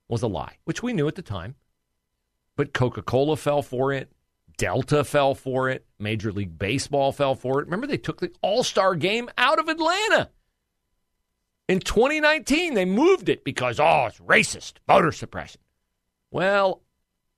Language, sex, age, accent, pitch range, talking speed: English, male, 40-59, American, 110-170 Hz, 155 wpm